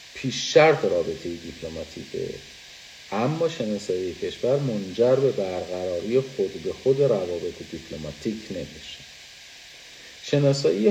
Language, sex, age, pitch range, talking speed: Persian, male, 50-69, 95-150 Hz, 95 wpm